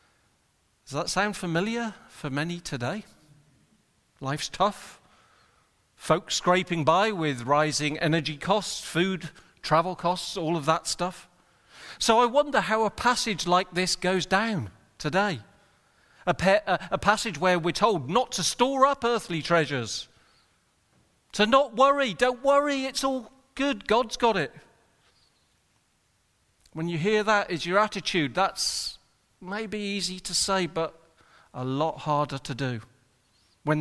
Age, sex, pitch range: 40-59, male, 150-205 Hz